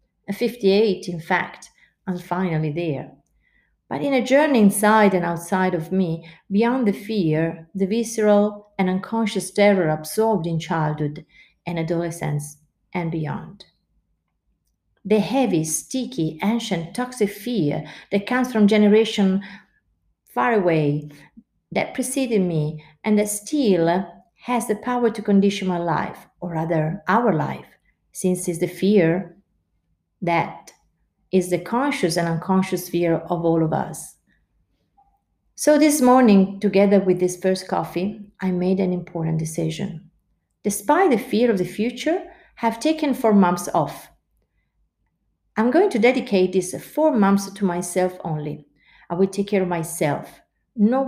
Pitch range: 170-215 Hz